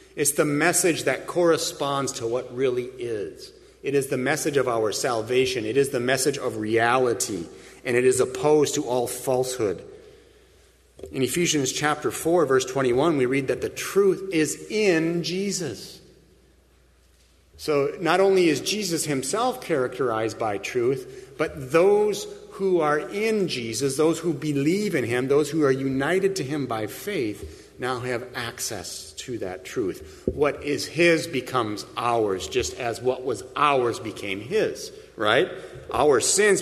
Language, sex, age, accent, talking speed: English, male, 40-59, American, 150 wpm